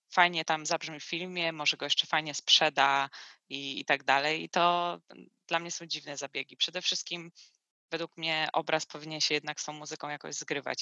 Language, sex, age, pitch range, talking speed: Polish, female, 20-39, 150-170 Hz, 190 wpm